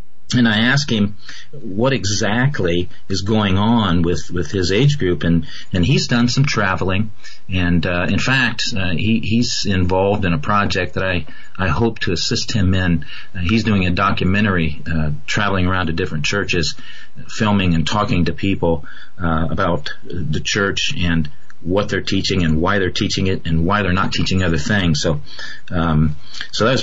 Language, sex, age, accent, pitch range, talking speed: English, male, 40-59, American, 90-115 Hz, 180 wpm